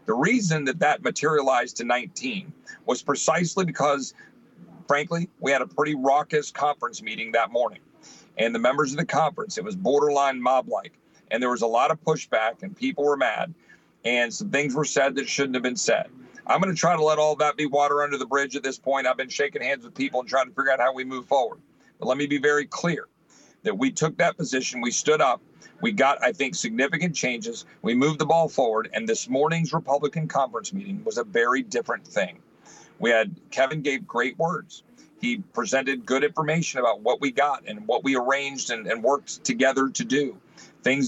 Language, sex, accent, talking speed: English, male, American, 210 wpm